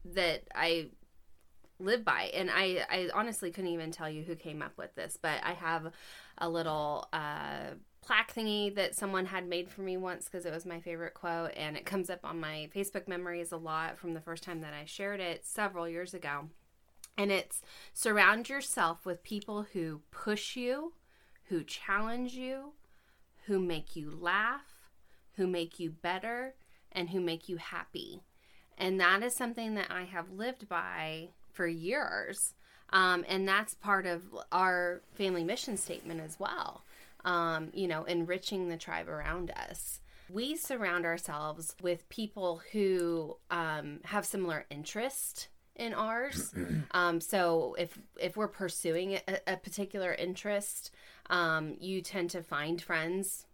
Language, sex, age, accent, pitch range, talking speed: English, female, 20-39, American, 165-195 Hz, 160 wpm